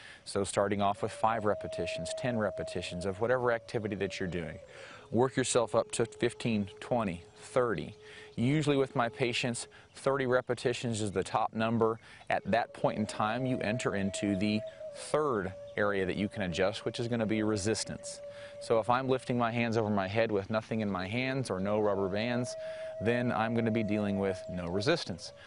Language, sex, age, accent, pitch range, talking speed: English, male, 30-49, American, 105-135 Hz, 185 wpm